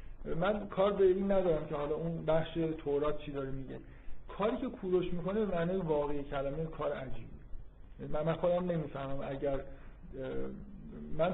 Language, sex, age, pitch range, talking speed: Persian, male, 50-69, 140-185 Hz, 150 wpm